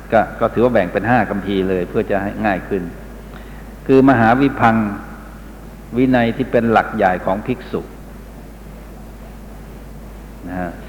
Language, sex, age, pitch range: Thai, male, 60-79, 100-120 Hz